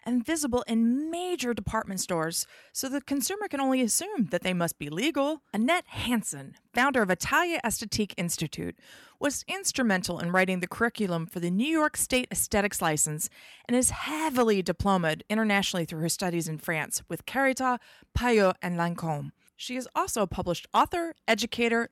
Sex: female